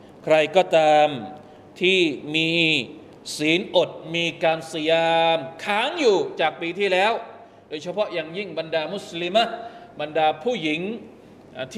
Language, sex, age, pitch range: Thai, male, 20-39, 160-205 Hz